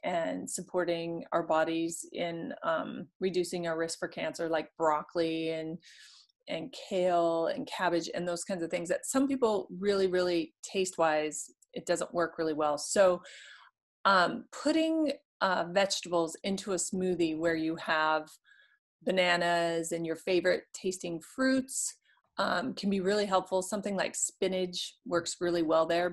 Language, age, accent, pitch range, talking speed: English, 30-49, American, 170-200 Hz, 145 wpm